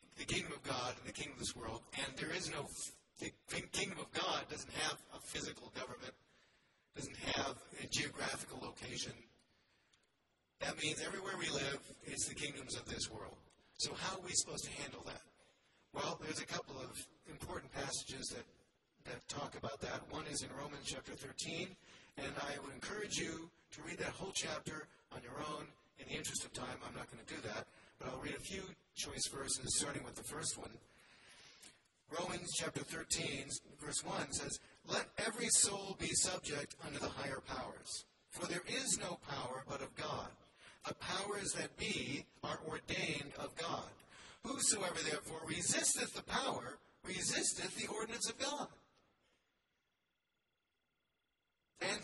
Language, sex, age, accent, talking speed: English, male, 40-59, American, 165 wpm